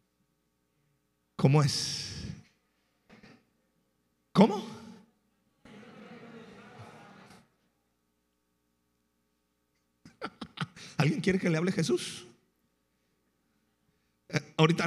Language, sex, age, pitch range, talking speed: Spanish, male, 50-69, 115-175 Hz, 40 wpm